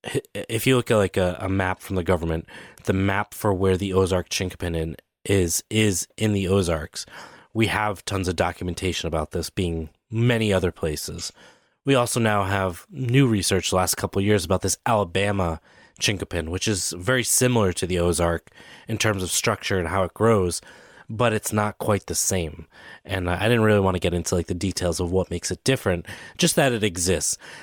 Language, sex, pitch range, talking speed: English, male, 90-110 Hz, 195 wpm